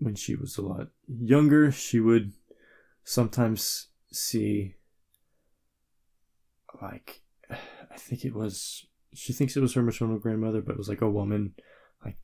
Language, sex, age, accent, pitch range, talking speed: English, male, 20-39, American, 100-120 Hz, 140 wpm